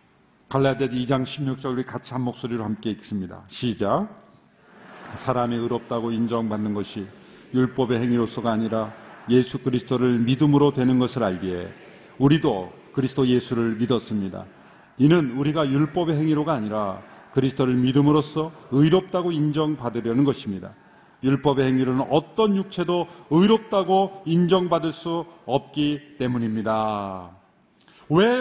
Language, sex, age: Korean, male, 40-59